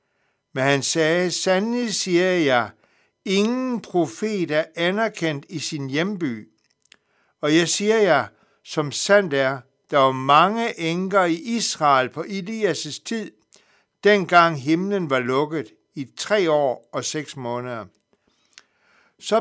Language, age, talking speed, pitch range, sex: Danish, 60-79, 125 wpm, 150-205 Hz, male